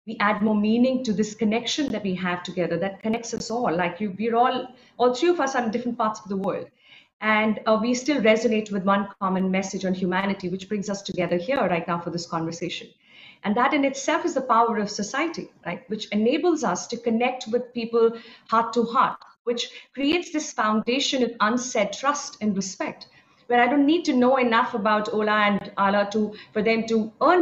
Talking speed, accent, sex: 210 wpm, Indian, female